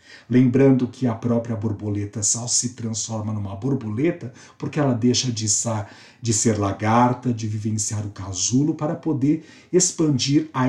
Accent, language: Brazilian, Portuguese